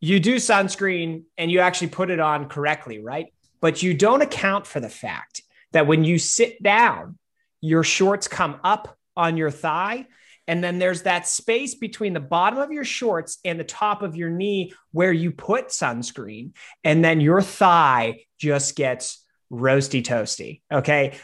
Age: 30-49